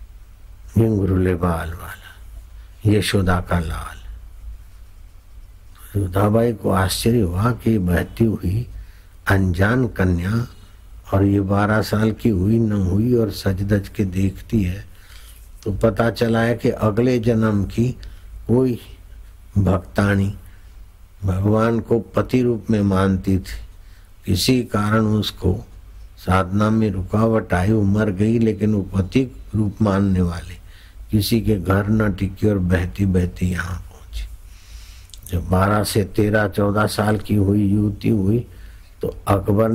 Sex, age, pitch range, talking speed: male, 60-79, 90-110 Hz, 120 wpm